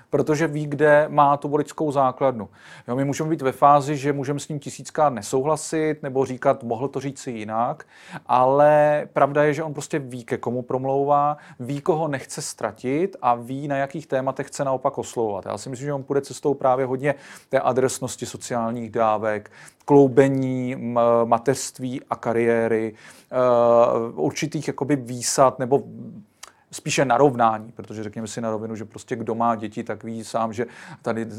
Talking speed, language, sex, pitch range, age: 165 wpm, Czech, male, 115-140 Hz, 40-59